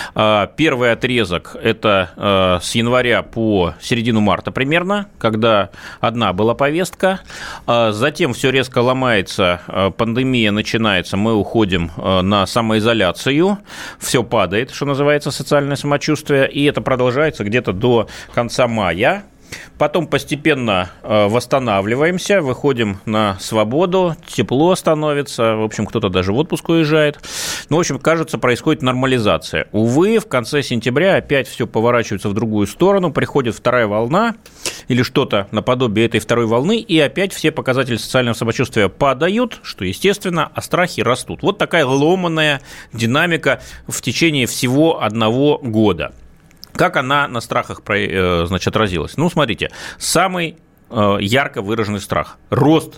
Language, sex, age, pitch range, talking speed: Russian, male, 30-49, 105-150 Hz, 125 wpm